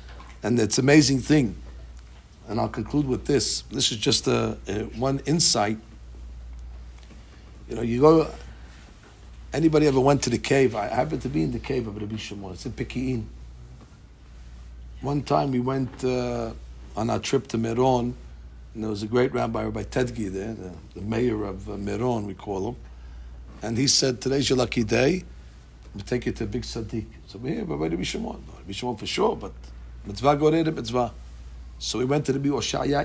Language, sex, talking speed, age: English, male, 185 wpm, 60-79